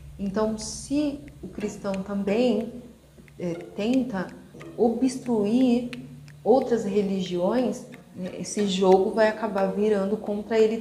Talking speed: 90 wpm